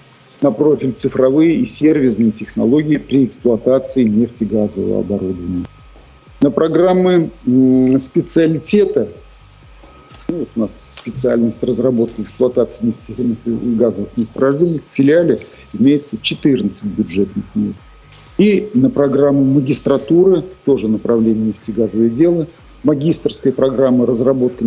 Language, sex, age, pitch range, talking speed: Russian, male, 50-69, 110-145 Hz, 95 wpm